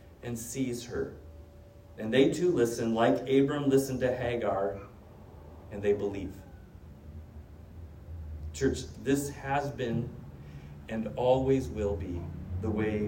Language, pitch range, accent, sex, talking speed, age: English, 100-140 Hz, American, male, 115 wpm, 30-49